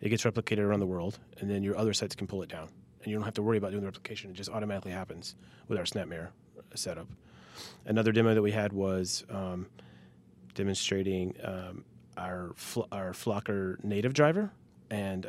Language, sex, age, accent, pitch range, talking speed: English, male, 30-49, American, 95-110 Hz, 190 wpm